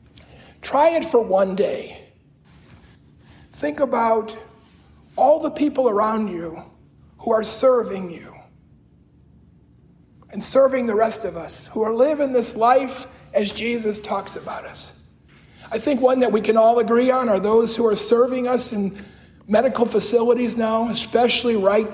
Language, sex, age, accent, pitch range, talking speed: English, male, 50-69, American, 195-250 Hz, 145 wpm